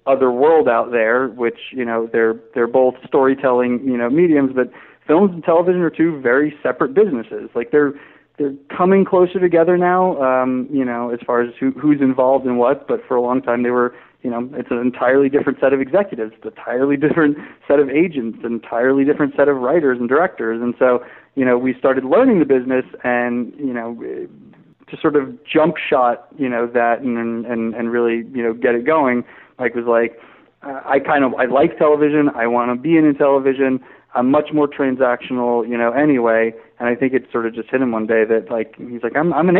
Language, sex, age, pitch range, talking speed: English, male, 30-49, 120-145 Hz, 210 wpm